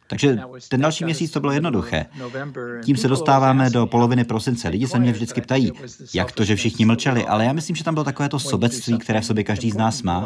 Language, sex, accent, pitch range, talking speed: Czech, male, native, 100-130 Hz, 230 wpm